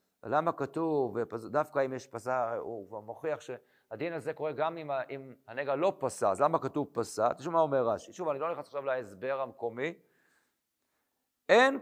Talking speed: 170 wpm